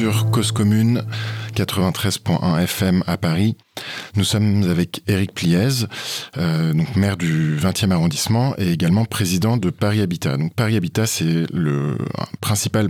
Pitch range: 85-110 Hz